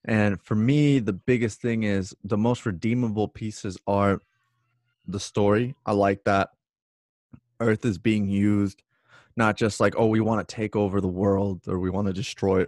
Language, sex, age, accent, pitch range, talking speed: English, male, 20-39, American, 95-115 Hz, 175 wpm